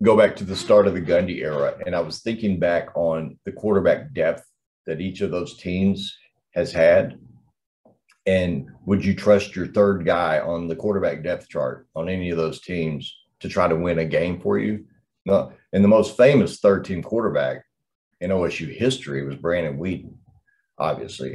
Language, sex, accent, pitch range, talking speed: English, male, American, 80-105 Hz, 180 wpm